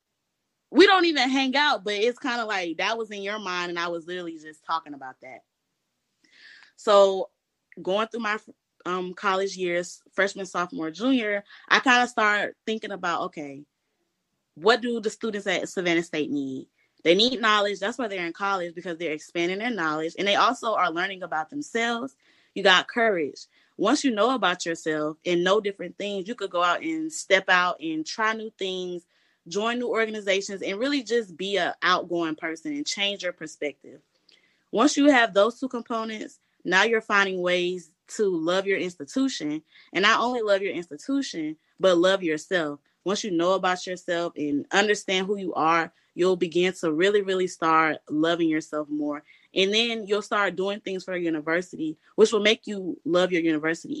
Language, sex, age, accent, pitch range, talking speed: English, female, 20-39, American, 170-225 Hz, 180 wpm